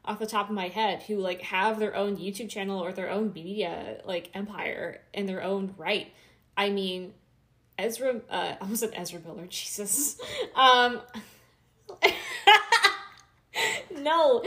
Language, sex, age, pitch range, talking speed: English, female, 20-39, 185-225 Hz, 145 wpm